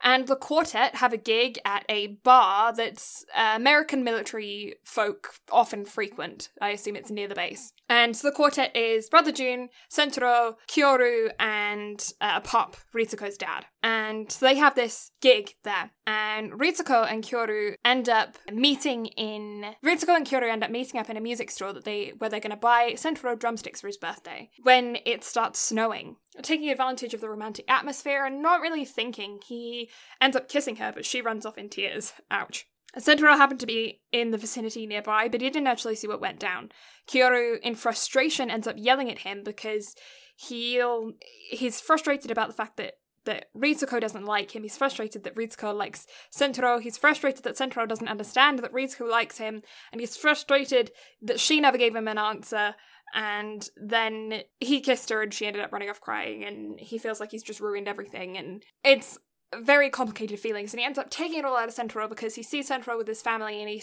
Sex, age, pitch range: female, 10-29, 215-265 Hz